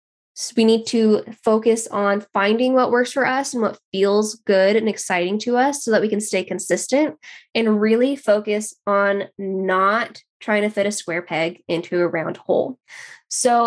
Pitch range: 190-230 Hz